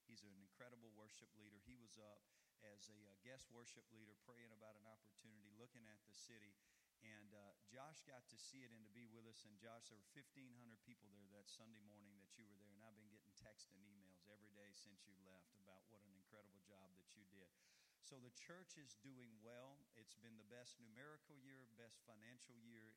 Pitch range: 105-125 Hz